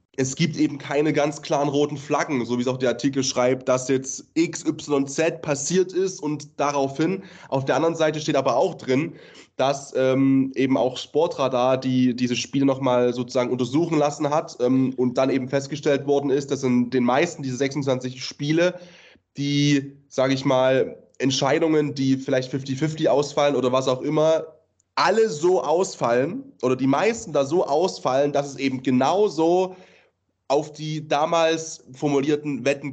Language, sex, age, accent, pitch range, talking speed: German, male, 20-39, German, 130-160 Hz, 160 wpm